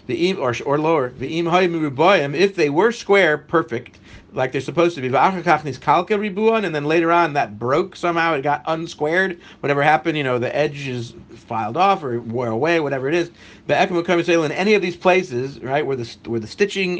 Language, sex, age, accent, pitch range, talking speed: English, male, 50-69, American, 140-180 Hz, 170 wpm